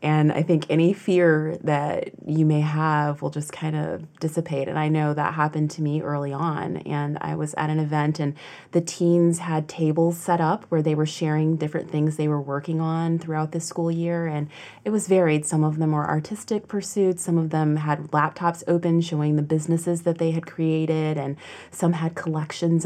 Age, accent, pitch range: 30-49, American, 150-170 Hz